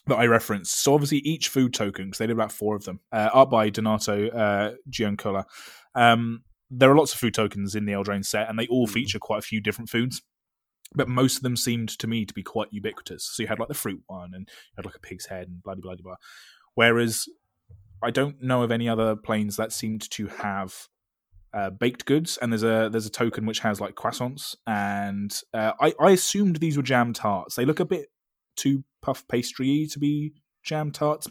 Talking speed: 220 wpm